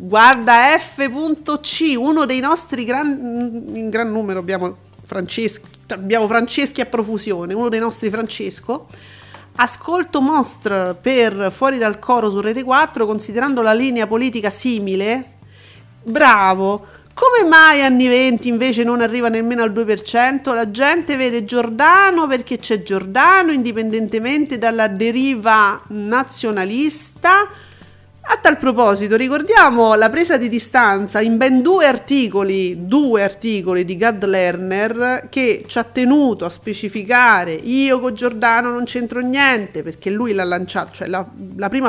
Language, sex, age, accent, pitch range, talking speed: Italian, female, 40-59, native, 205-255 Hz, 130 wpm